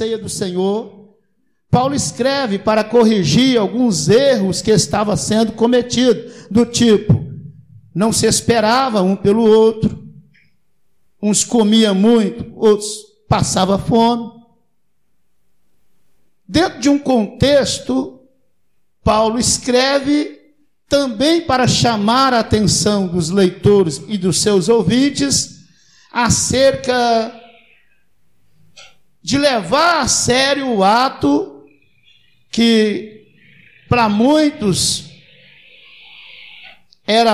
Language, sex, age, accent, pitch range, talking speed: Portuguese, male, 60-79, Brazilian, 205-240 Hz, 85 wpm